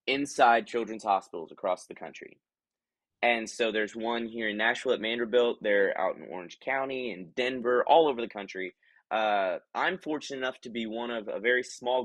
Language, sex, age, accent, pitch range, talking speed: English, male, 20-39, American, 105-130 Hz, 185 wpm